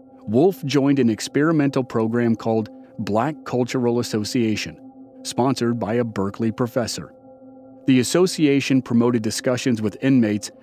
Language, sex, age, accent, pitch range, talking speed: English, male, 40-59, American, 115-145 Hz, 115 wpm